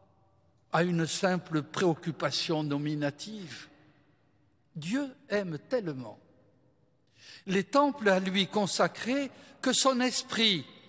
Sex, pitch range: male, 145-215 Hz